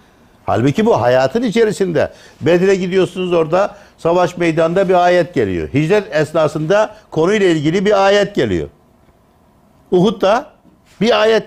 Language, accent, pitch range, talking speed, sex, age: Turkish, native, 115-190 Hz, 120 wpm, male, 60-79